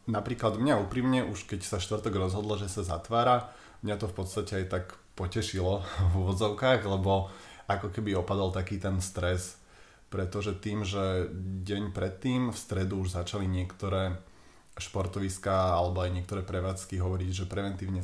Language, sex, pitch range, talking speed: Slovak, male, 90-100 Hz, 150 wpm